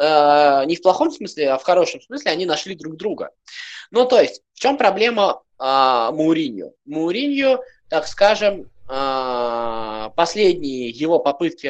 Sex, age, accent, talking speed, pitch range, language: male, 20-39, native, 130 wpm, 150-245 Hz, Russian